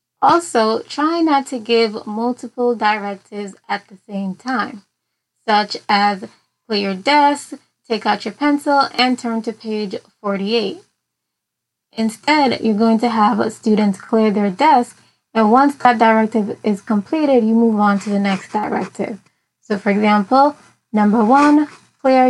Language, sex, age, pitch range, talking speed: English, female, 20-39, 210-255 Hz, 145 wpm